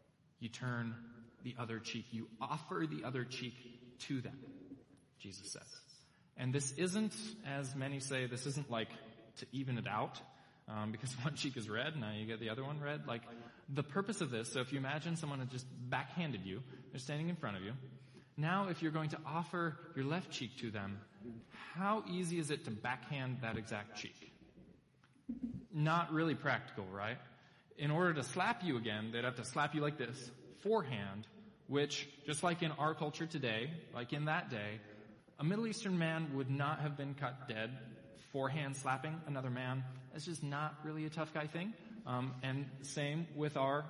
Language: English